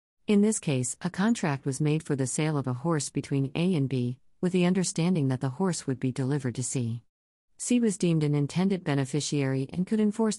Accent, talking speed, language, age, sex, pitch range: American, 215 wpm, English, 50-69, female, 135-165 Hz